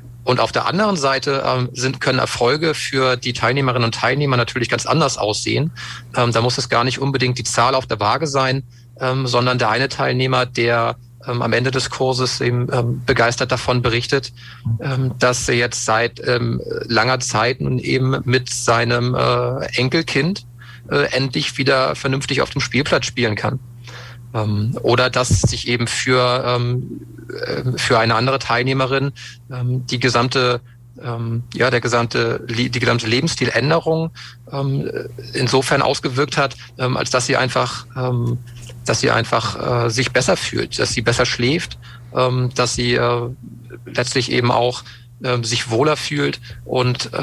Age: 40-59